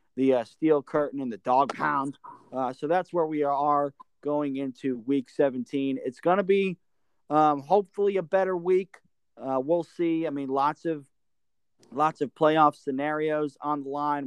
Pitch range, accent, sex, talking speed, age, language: 135-165 Hz, American, male, 170 wpm, 40-59, English